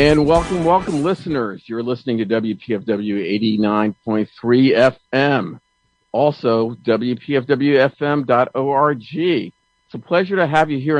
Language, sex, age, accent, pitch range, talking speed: English, male, 50-69, American, 120-165 Hz, 120 wpm